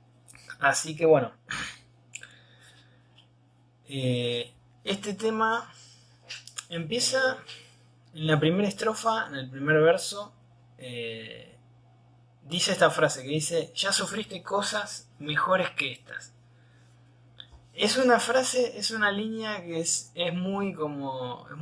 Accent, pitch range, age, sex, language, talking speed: Argentinian, 120-170 Hz, 20-39, male, Spanish, 110 wpm